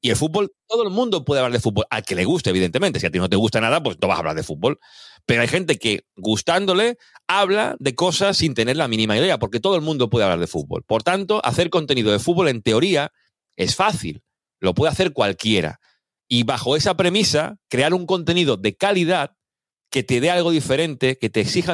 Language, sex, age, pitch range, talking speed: Spanish, male, 40-59, 115-175 Hz, 225 wpm